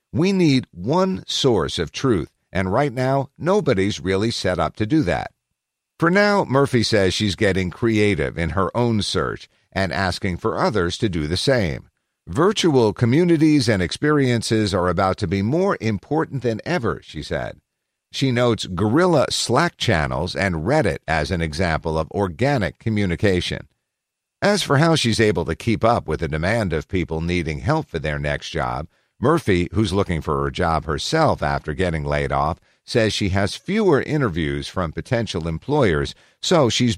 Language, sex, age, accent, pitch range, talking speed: English, male, 50-69, American, 85-125 Hz, 165 wpm